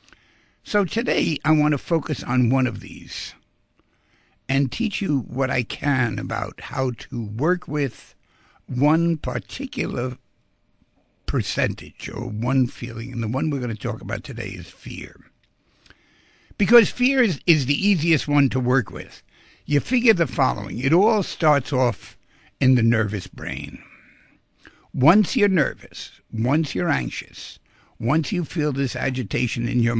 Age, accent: 60-79, American